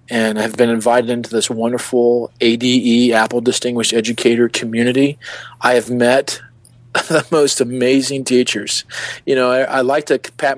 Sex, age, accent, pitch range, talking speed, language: male, 40-59, American, 110-125 Hz, 145 wpm, English